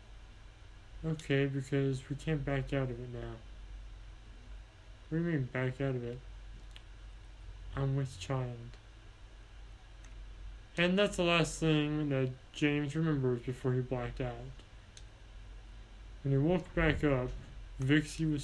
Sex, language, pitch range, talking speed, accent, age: male, English, 105-140 Hz, 125 wpm, American, 20-39